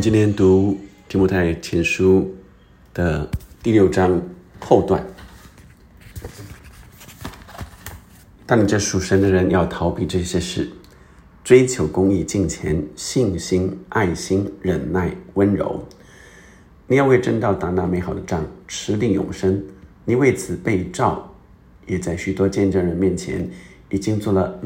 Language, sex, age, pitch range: Chinese, male, 50-69, 95-100 Hz